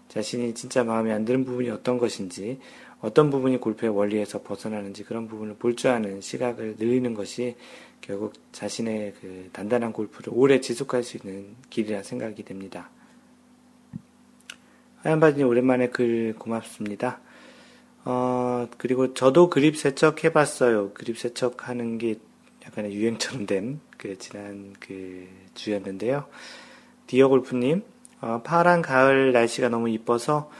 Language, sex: Korean, male